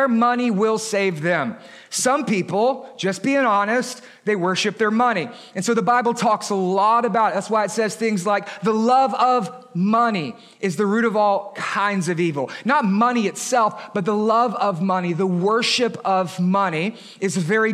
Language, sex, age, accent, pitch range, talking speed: English, male, 30-49, American, 195-245 Hz, 185 wpm